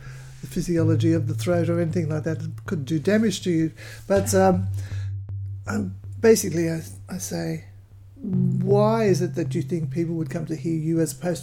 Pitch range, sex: 115-175 Hz, male